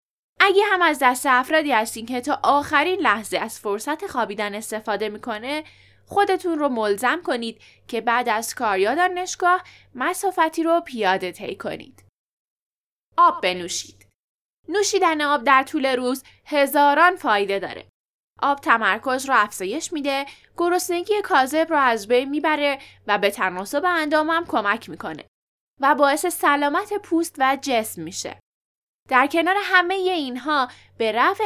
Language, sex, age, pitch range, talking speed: Persian, female, 10-29, 240-345 Hz, 135 wpm